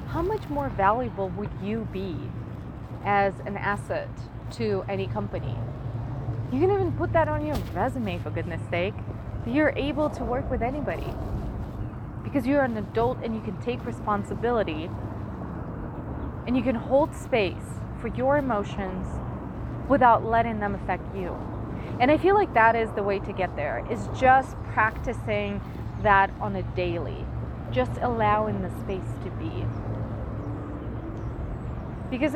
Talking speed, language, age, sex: 145 wpm, English, 30-49, female